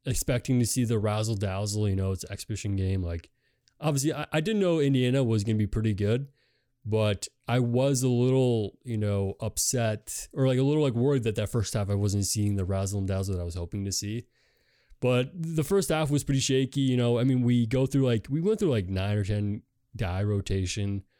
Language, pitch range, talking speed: English, 105-125 Hz, 220 wpm